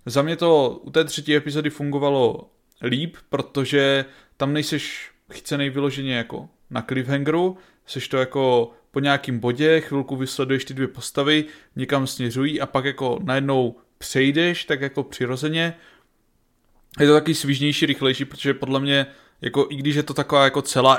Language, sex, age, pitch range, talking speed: Czech, male, 20-39, 130-145 Hz, 155 wpm